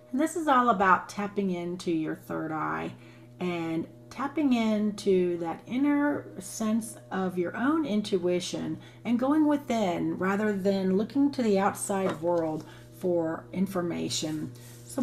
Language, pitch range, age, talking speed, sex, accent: English, 170-230 Hz, 40-59, 130 wpm, female, American